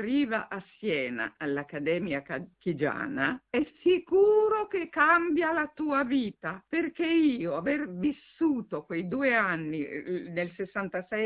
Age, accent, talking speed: 50-69, native, 110 wpm